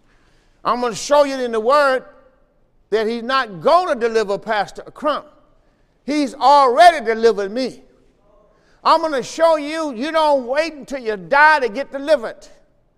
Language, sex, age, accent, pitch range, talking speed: English, male, 50-69, American, 205-285 Hz, 155 wpm